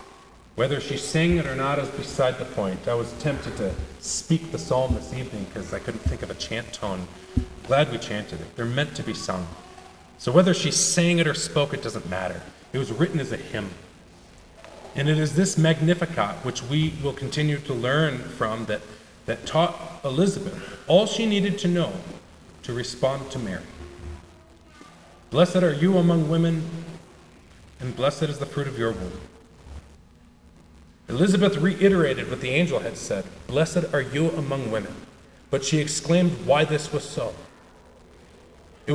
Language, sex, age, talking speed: English, male, 40-59, 170 wpm